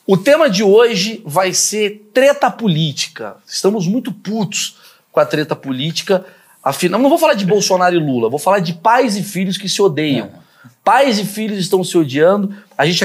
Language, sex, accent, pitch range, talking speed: Portuguese, male, Brazilian, 165-210 Hz, 185 wpm